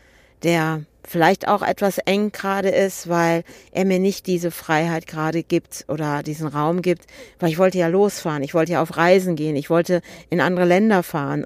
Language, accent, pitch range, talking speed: German, German, 160-190 Hz, 190 wpm